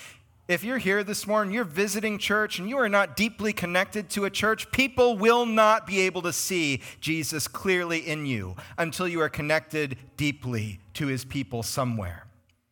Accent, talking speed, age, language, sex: American, 175 wpm, 40-59, English, male